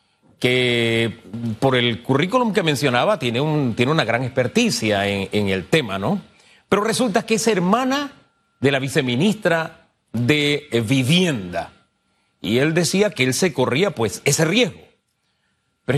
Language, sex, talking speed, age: Spanish, male, 135 wpm, 40-59